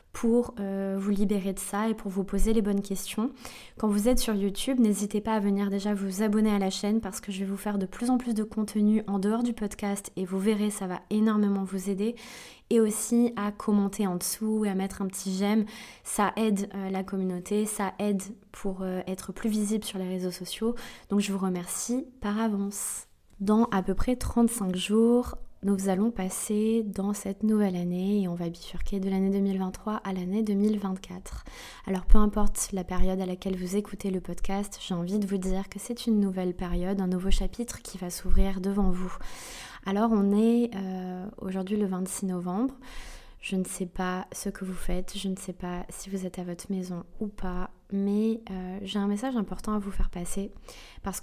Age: 20-39